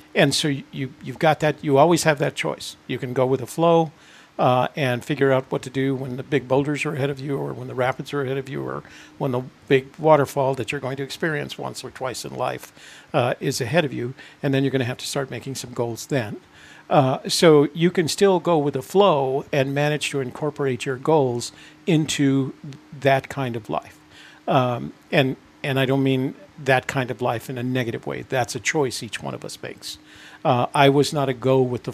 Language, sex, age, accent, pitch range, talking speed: English, male, 50-69, American, 130-150 Hz, 230 wpm